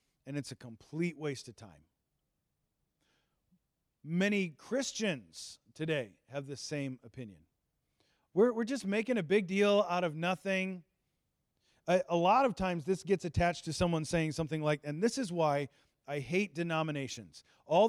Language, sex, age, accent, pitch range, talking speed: English, male, 40-59, American, 145-195 Hz, 150 wpm